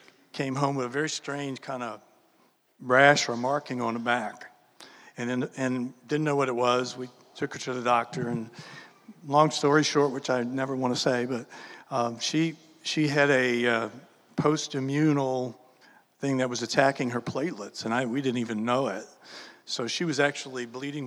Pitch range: 125-145 Hz